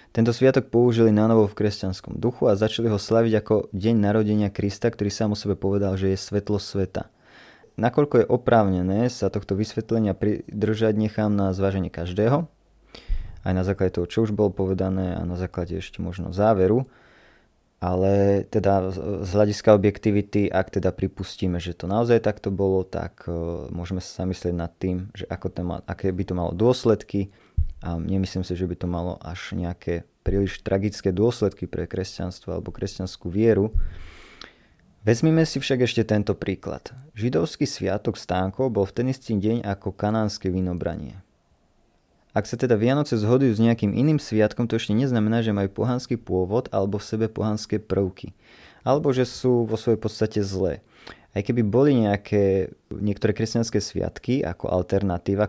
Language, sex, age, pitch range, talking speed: Slovak, male, 20-39, 95-115 Hz, 160 wpm